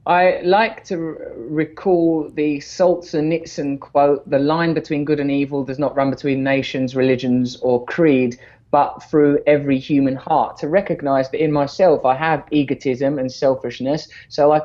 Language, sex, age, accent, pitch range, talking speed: English, male, 20-39, British, 130-160 Hz, 165 wpm